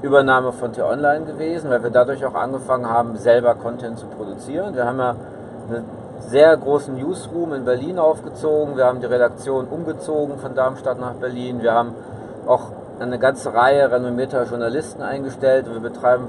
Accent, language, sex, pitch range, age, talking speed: German, German, male, 125-140 Hz, 40-59, 160 wpm